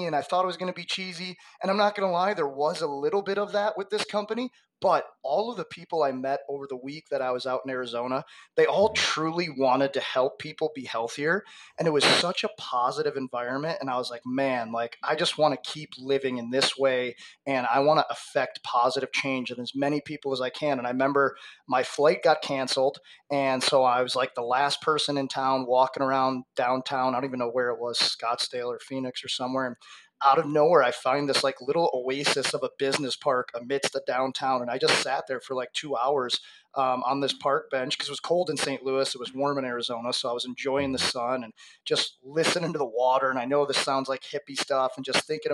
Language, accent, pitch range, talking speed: English, American, 130-150 Hz, 240 wpm